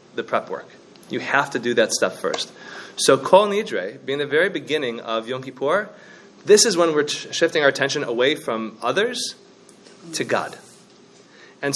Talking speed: 170 wpm